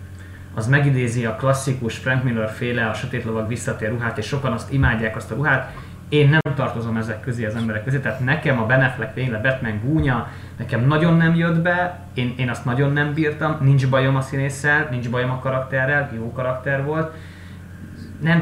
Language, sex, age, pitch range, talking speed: Hungarian, male, 30-49, 110-135 Hz, 180 wpm